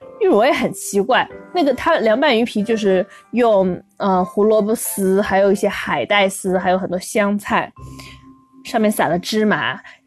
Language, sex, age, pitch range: Chinese, female, 20-39, 195-270 Hz